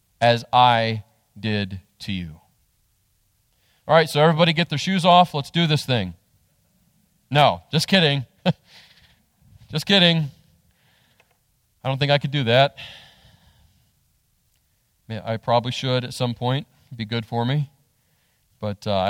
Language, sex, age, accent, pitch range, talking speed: English, male, 40-59, American, 120-160 Hz, 135 wpm